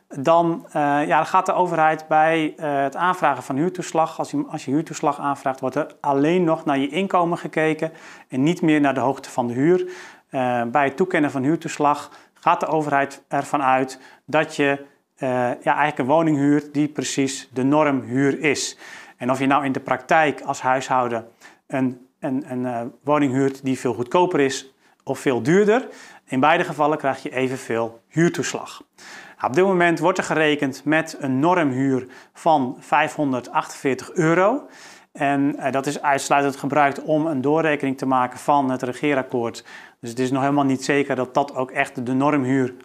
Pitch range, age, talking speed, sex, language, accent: 130-155 Hz, 40-59, 180 wpm, male, Dutch, Dutch